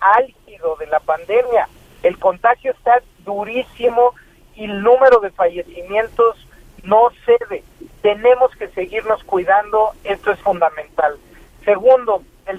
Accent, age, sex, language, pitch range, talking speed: Mexican, 50-69, male, Spanish, 195-255 Hz, 115 wpm